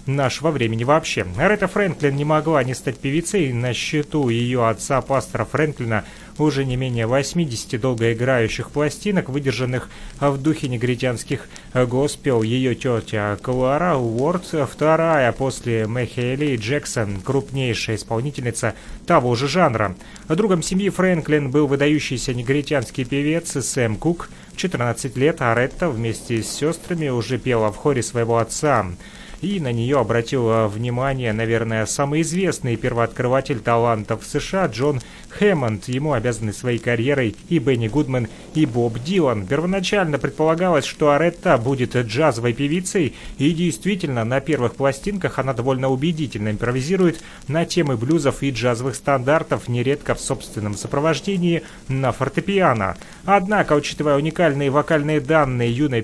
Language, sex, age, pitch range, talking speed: Russian, male, 30-49, 120-155 Hz, 130 wpm